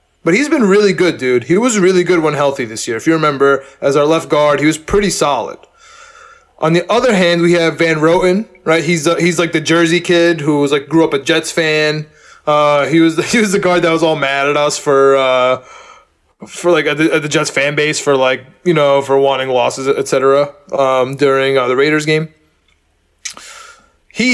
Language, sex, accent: English, male, American